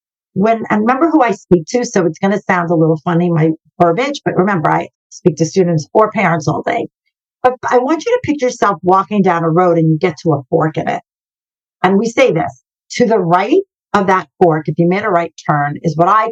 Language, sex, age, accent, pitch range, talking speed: English, female, 50-69, American, 170-245 Hz, 240 wpm